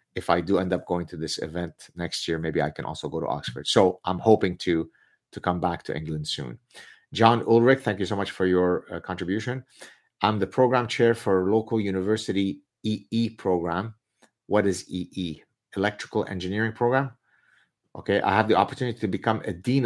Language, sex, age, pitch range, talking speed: English, male, 30-49, 85-110 Hz, 185 wpm